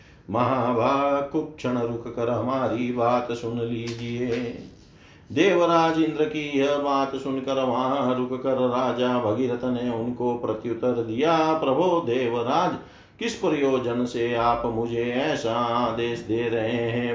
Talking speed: 115 wpm